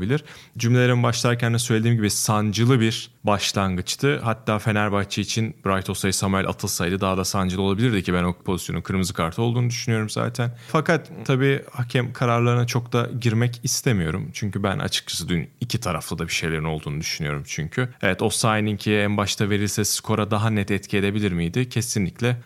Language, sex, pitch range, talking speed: Turkish, male, 100-130 Hz, 165 wpm